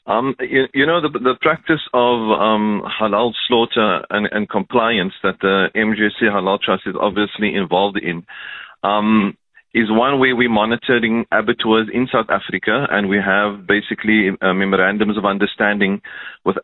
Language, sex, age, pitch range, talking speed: English, male, 40-59, 105-125 Hz, 150 wpm